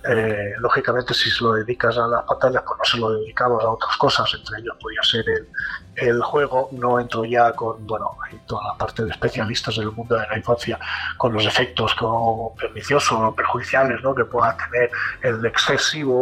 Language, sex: Spanish, male